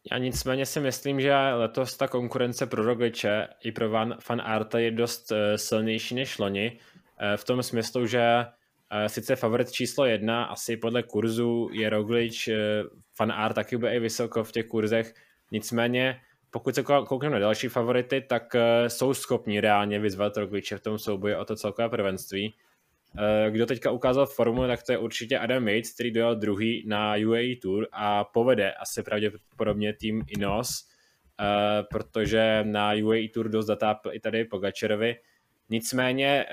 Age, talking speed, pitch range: 20-39, 150 wpm, 105-120 Hz